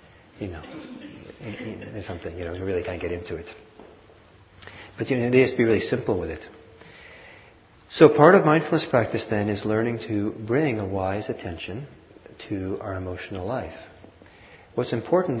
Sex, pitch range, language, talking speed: male, 100-130 Hz, English, 160 wpm